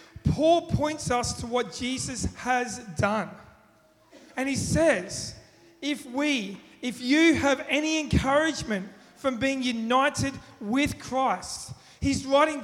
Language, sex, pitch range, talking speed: English, male, 245-280 Hz, 120 wpm